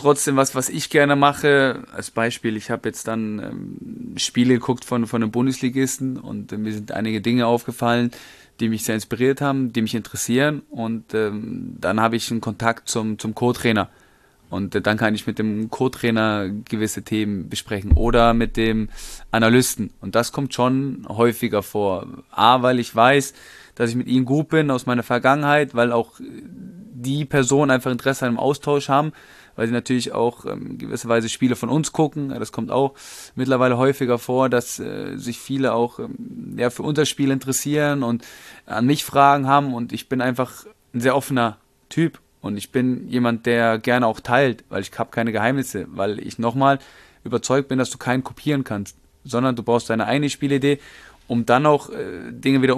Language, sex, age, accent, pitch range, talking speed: German, male, 20-39, German, 115-135 Hz, 185 wpm